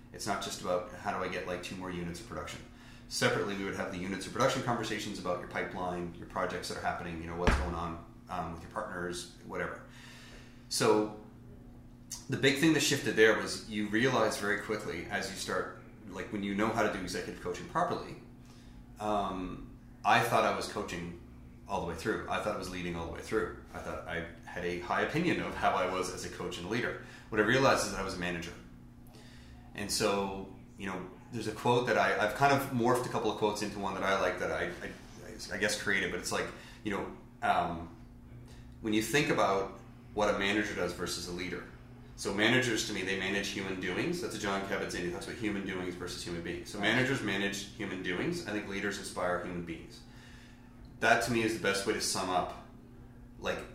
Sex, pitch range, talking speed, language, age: male, 90-120 Hz, 220 wpm, English, 30-49